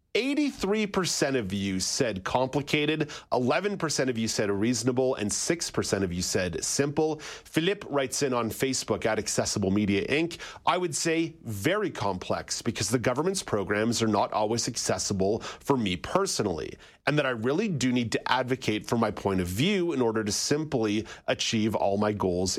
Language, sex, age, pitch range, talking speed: English, male, 30-49, 100-140 Hz, 165 wpm